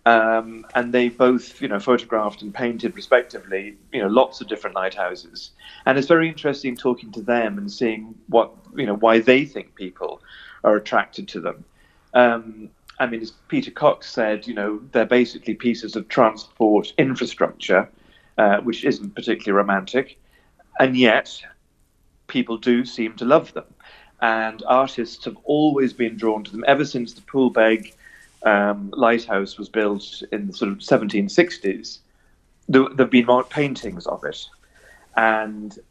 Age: 40-59